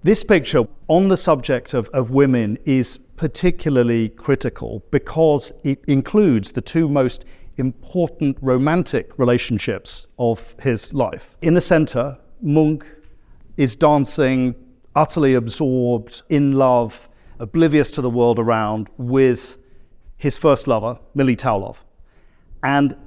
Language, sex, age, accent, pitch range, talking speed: English, male, 50-69, British, 120-145 Hz, 115 wpm